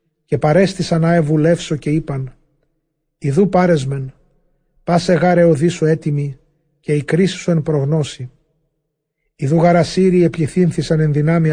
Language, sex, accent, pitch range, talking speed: Greek, male, native, 150-175 Hz, 120 wpm